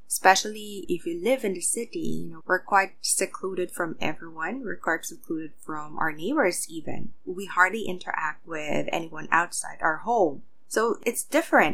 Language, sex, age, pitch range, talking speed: English, female, 20-39, 165-220 Hz, 165 wpm